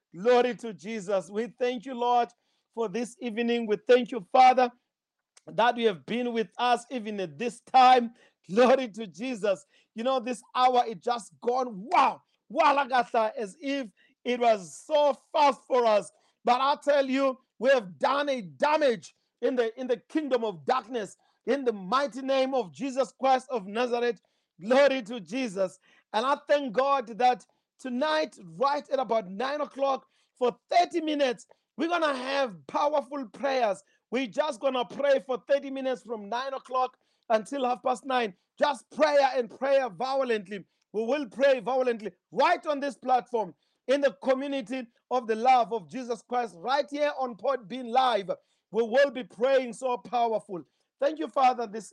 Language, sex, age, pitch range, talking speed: English, male, 40-59, 230-270 Hz, 170 wpm